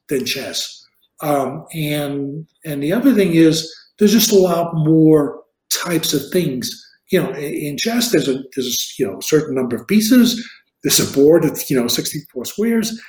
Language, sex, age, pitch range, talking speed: English, male, 50-69, 140-185 Hz, 180 wpm